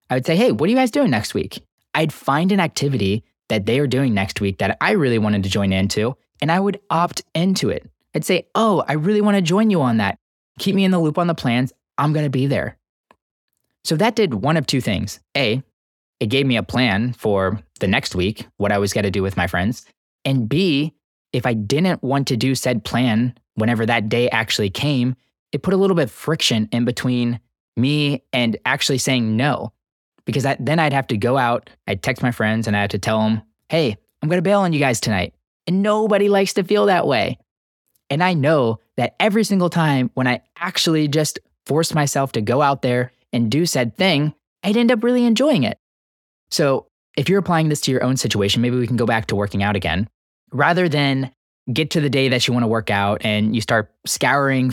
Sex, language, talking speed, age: male, English, 225 wpm, 20-39